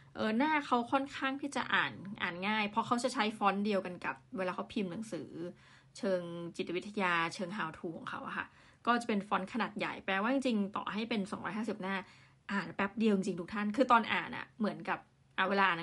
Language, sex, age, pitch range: Thai, female, 20-39, 185-240 Hz